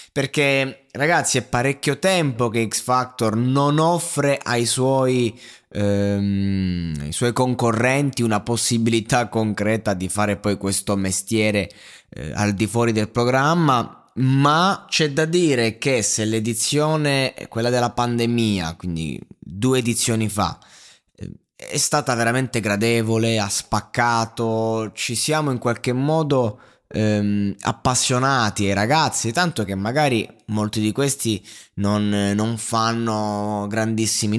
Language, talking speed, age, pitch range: Italian, 115 wpm, 20-39, 105-130 Hz